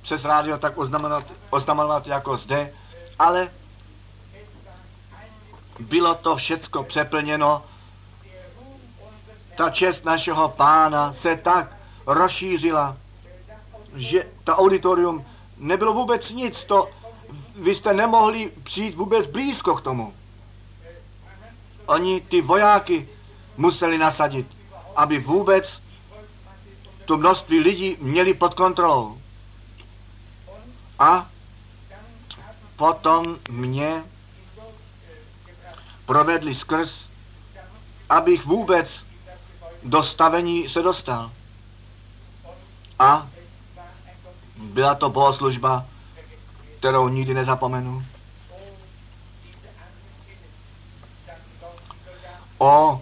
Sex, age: male, 50-69